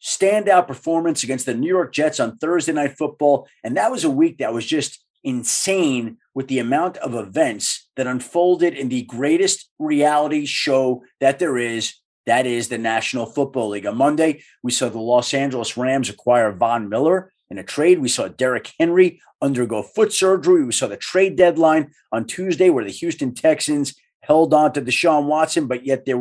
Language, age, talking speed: English, 30-49, 185 wpm